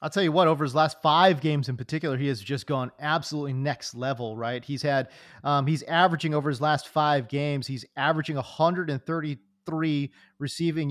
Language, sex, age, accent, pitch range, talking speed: English, male, 30-49, American, 145-200 Hz, 180 wpm